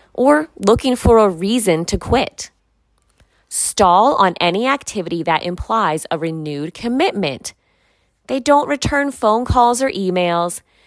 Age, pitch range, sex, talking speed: 30-49, 170-250 Hz, female, 125 wpm